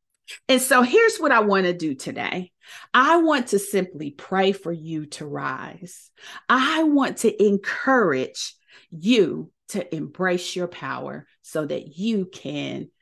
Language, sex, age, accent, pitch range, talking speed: English, female, 40-59, American, 175-255 Hz, 145 wpm